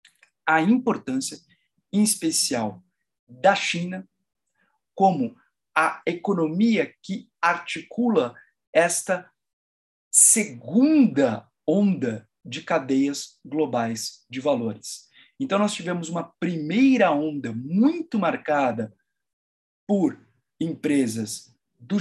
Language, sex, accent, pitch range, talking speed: Portuguese, male, Brazilian, 150-215 Hz, 80 wpm